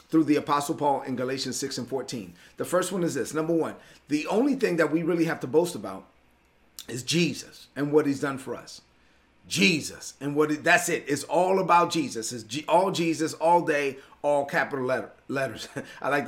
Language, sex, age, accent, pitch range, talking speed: English, male, 30-49, American, 145-170 Hz, 195 wpm